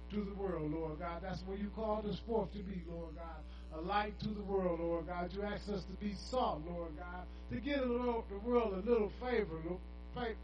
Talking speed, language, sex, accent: 225 wpm, English, male, American